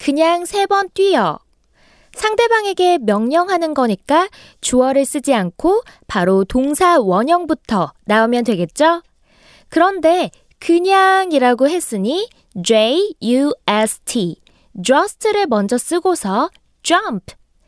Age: 20-39